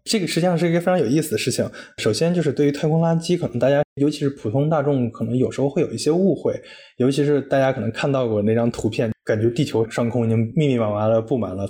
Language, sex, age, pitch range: Chinese, male, 20-39, 110-145 Hz